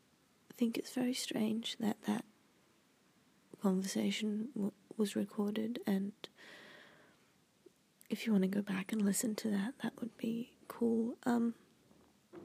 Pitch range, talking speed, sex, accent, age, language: 200-225 Hz, 125 wpm, female, Australian, 20-39, English